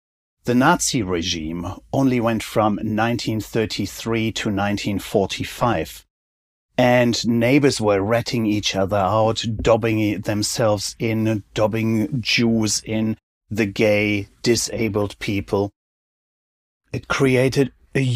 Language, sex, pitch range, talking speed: English, male, 100-120 Hz, 95 wpm